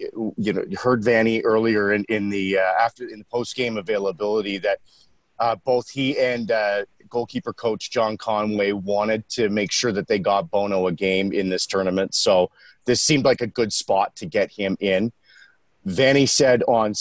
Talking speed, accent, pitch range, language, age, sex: 185 wpm, American, 105-135 Hz, English, 40-59, male